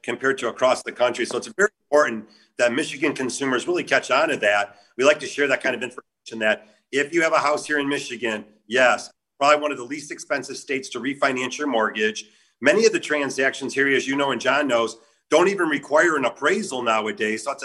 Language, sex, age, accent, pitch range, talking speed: English, male, 40-59, American, 130-155 Hz, 220 wpm